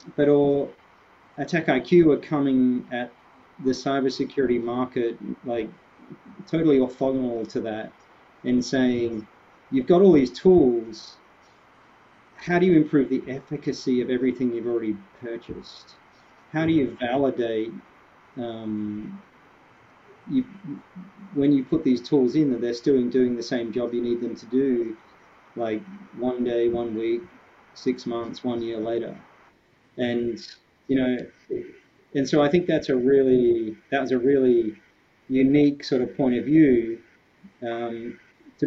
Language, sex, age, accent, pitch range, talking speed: English, male, 40-59, Australian, 120-140 Hz, 135 wpm